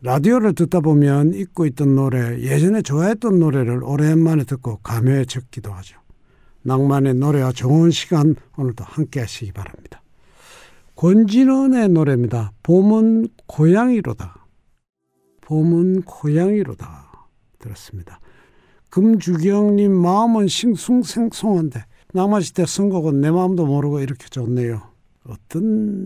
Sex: male